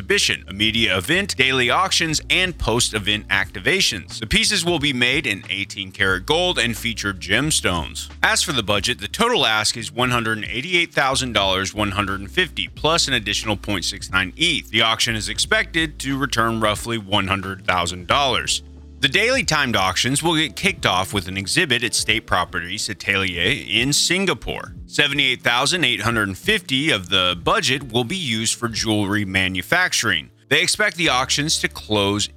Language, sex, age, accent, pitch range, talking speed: English, male, 30-49, American, 100-135 Hz, 140 wpm